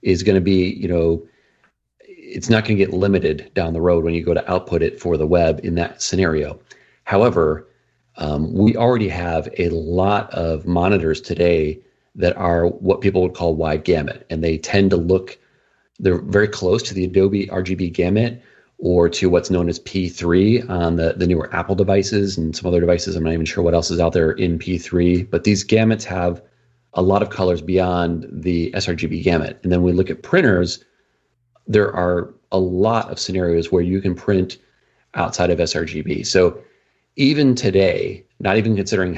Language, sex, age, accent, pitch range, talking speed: English, male, 40-59, American, 85-100 Hz, 185 wpm